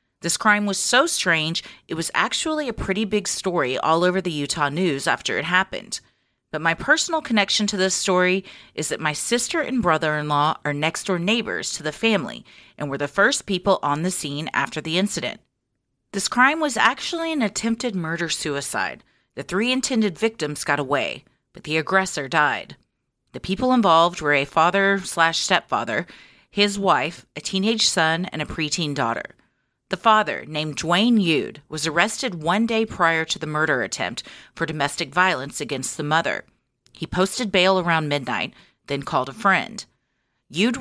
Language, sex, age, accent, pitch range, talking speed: English, female, 30-49, American, 150-210 Hz, 165 wpm